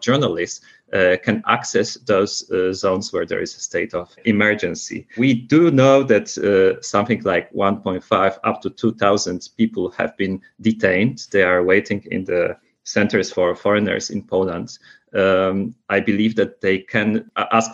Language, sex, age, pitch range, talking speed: English, male, 30-49, 100-125 Hz, 155 wpm